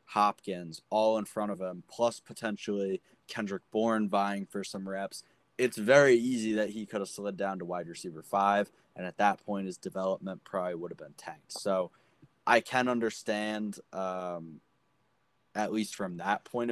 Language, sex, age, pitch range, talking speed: English, male, 20-39, 95-105 Hz, 170 wpm